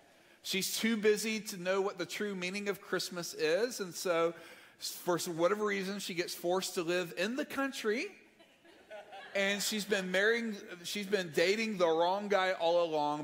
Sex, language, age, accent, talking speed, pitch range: male, English, 40-59, American, 160 wpm, 165-210 Hz